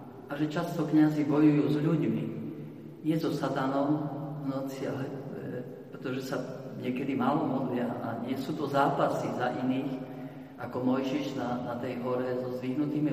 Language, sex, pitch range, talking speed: Slovak, male, 125-145 Hz, 140 wpm